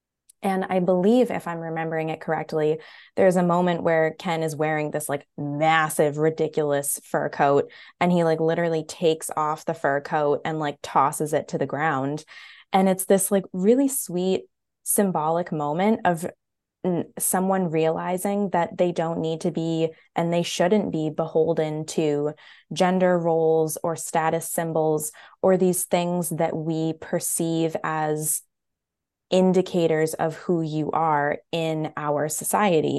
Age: 20-39